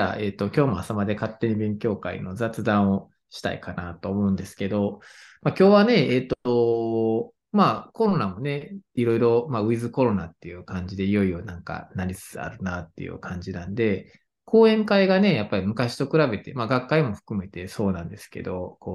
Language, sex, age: Japanese, male, 20-39